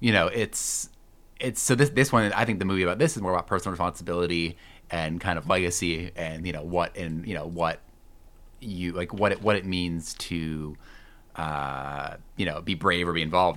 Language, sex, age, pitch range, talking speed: English, male, 30-49, 80-90 Hz, 210 wpm